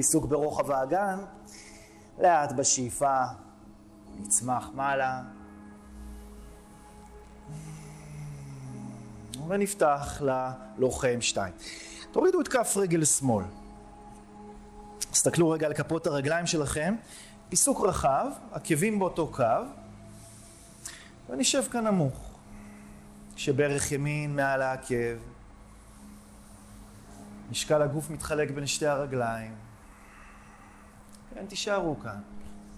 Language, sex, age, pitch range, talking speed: Hebrew, male, 30-49, 90-150 Hz, 75 wpm